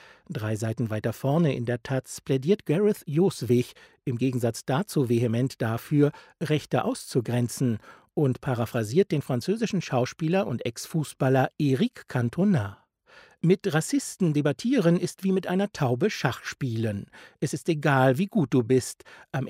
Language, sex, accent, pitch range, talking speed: German, male, German, 120-165 Hz, 135 wpm